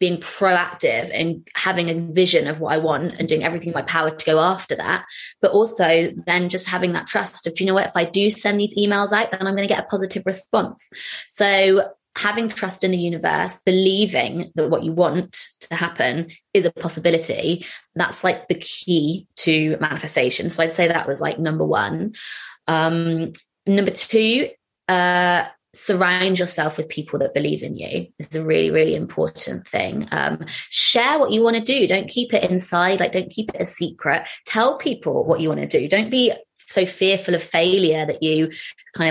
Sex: female